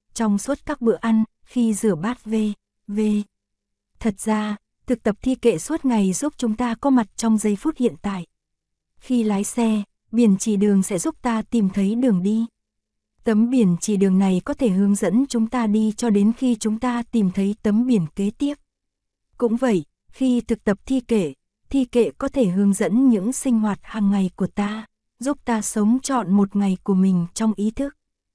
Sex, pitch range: female, 200-245 Hz